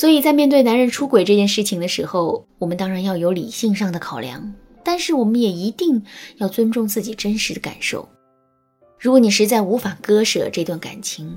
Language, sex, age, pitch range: Chinese, female, 20-39, 180-245 Hz